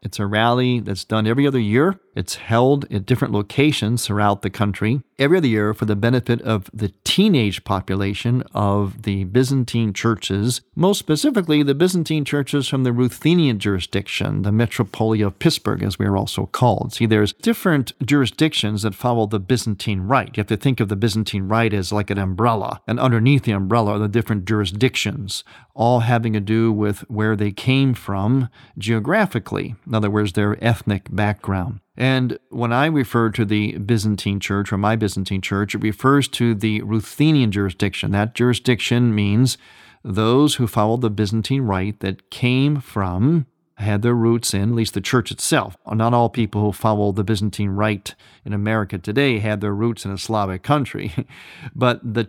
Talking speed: 175 wpm